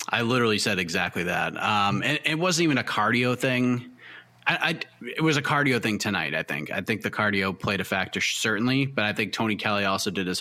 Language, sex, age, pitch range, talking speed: English, male, 20-39, 105-135 Hz, 225 wpm